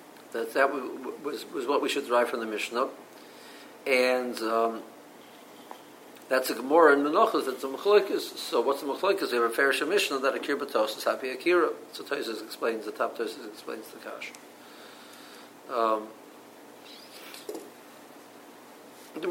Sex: male